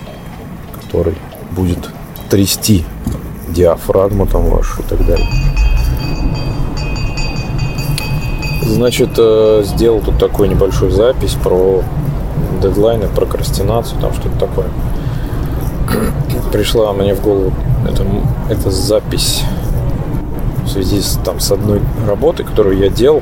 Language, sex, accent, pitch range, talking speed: Russian, male, native, 95-135 Hz, 95 wpm